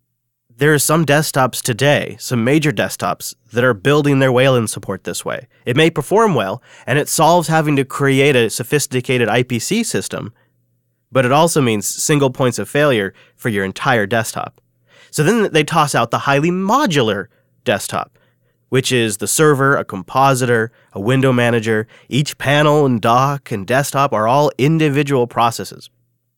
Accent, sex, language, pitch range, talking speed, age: American, male, English, 120-150 Hz, 160 wpm, 30-49